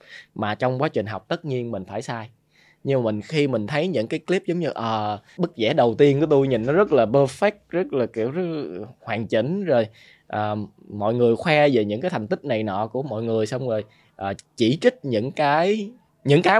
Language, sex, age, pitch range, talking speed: Vietnamese, male, 20-39, 105-150 Hz, 230 wpm